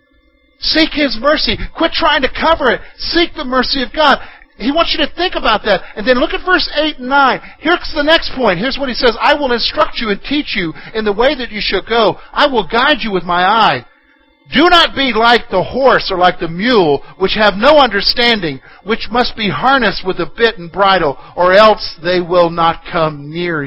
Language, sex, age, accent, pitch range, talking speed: English, male, 50-69, American, 185-275 Hz, 220 wpm